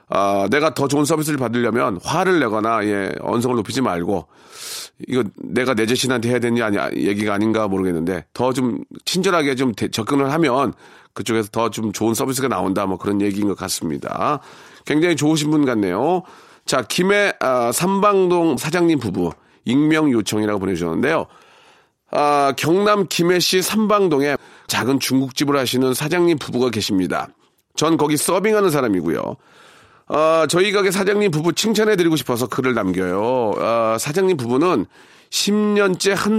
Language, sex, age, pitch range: Korean, male, 40-59, 120-175 Hz